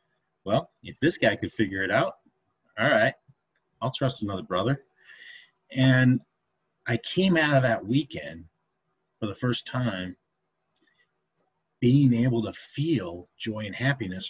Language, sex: English, male